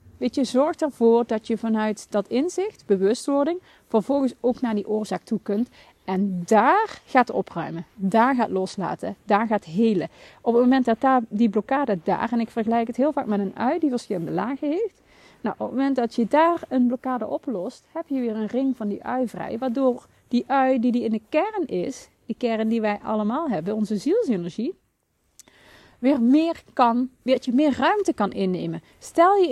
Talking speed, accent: 195 wpm, Dutch